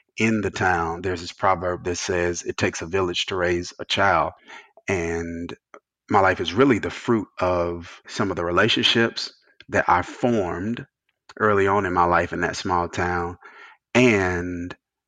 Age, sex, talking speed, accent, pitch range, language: 30-49, male, 165 wpm, American, 90-120 Hz, English